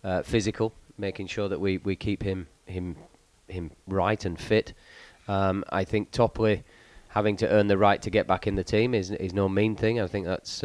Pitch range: 95-110 Hz